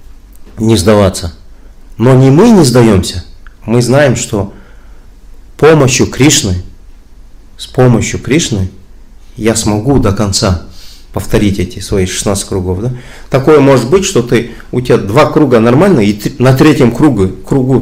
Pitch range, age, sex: 95-130 Hz, 40-59, male